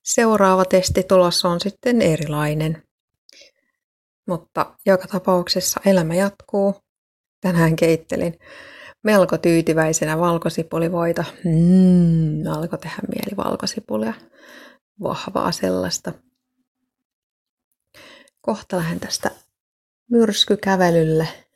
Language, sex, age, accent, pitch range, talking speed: Finnish, female, 30-49, native, 165-200 Hz, 70 wpm